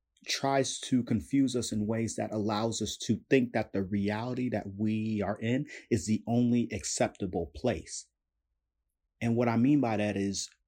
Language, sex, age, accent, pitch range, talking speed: English, male, 30-49, American, 95-125 Hz, 170 wpm